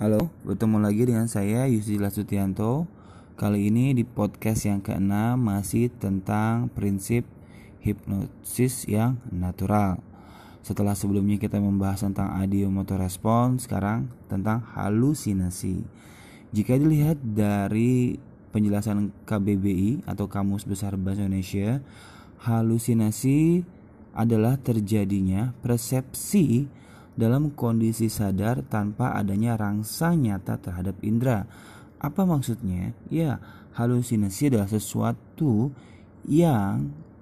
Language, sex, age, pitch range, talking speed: Indonesian, male, 20-39, 100-120 Hz, 95 wpm